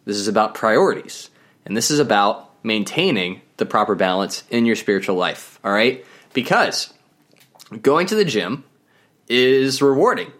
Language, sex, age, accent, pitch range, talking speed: English, male, 20-39, American, 105-140 Hz, 145 wpm